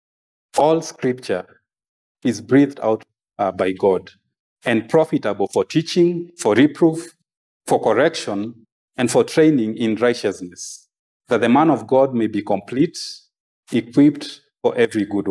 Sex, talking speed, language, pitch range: male, 130 wpm, English, 105-160 Hz